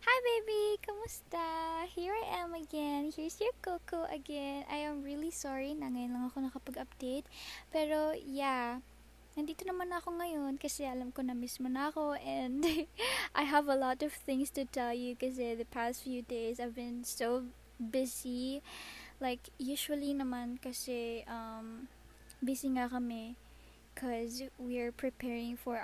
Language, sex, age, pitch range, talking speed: English, female, 20-39, 245-300 Hz, 145 wpm